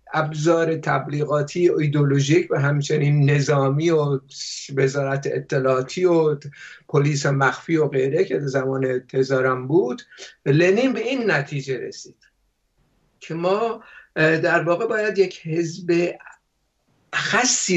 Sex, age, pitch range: male, 60-79, 145-190 Hz